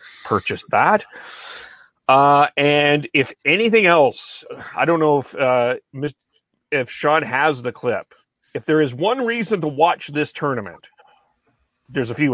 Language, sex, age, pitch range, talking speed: English, male, 40-59, 115-150 Hz, 140 wpm